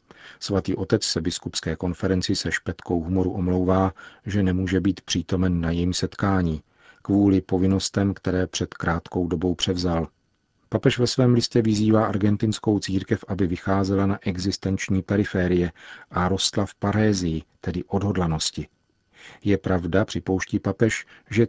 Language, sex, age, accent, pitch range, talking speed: Czech, male, 50-69, native, 90-100 Hz, 130 wpm